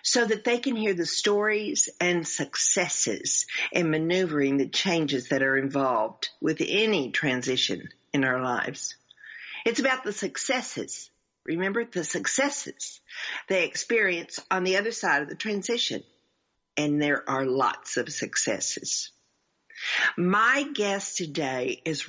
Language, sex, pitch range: English, female, 145-205 Hz